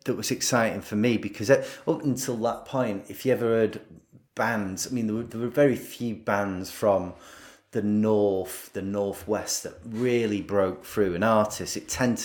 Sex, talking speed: male, 175 wpm